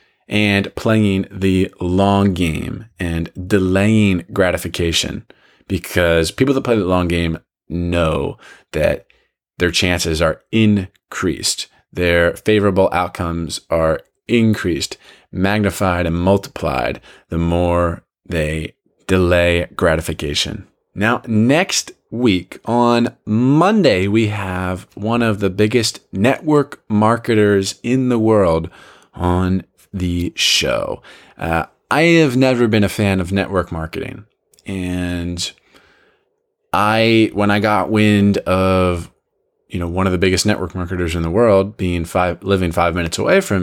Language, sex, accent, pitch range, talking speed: English, male, American, 85-105 Hz, 120 wpm